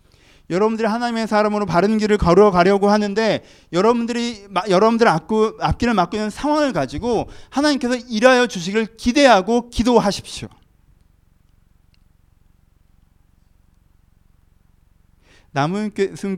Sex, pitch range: male, 110-160 Hz